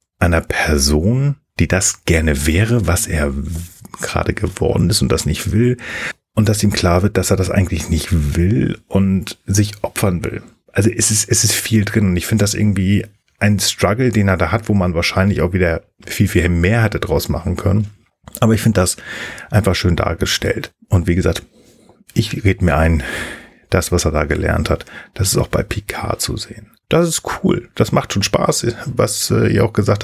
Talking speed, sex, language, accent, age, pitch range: 200 wpm, male, German, German, 40-59, 85-110 Hz